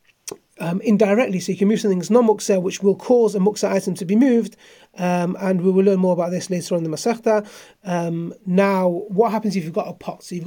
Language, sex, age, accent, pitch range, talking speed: English, male, 30-49, British, 190-230 Hz, 245 wpm